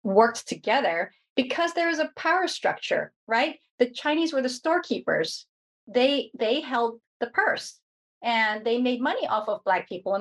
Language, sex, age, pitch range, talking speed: English, female, 30-49, 200-255 Hz, 165 wpm